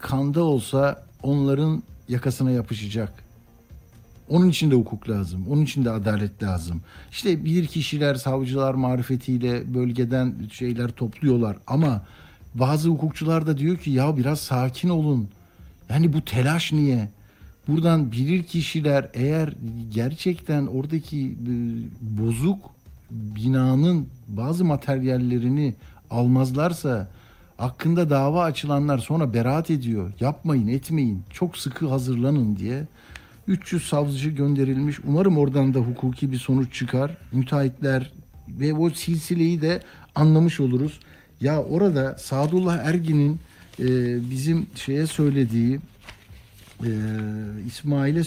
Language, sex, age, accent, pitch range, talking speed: Turkish, male, 60-79, native, 120-150 Hz, 105 wpm